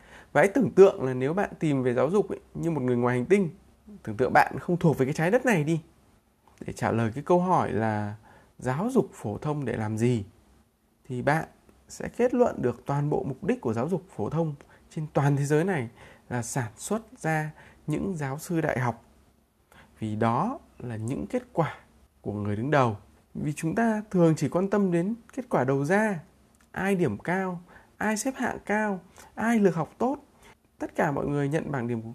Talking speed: 205 wpm